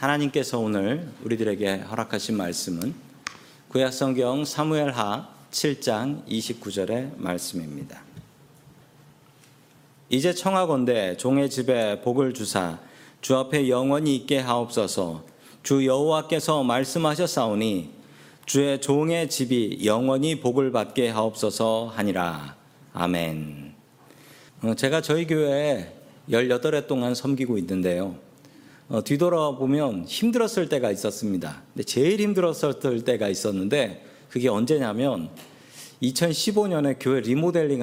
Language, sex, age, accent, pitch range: Korean, male, 50-69, native, 120-150 Hz